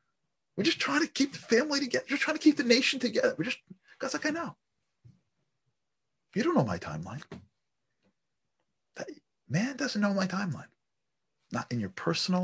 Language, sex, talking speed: English, male, 175 wpm